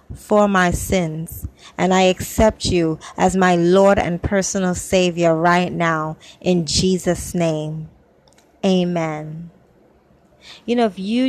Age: 20-39